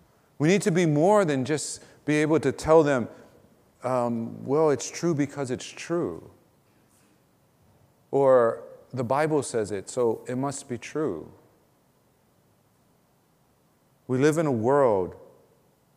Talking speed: 130 wpm